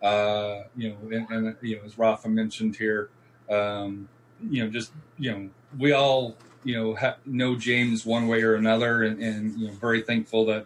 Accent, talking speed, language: American, 180 wpm, English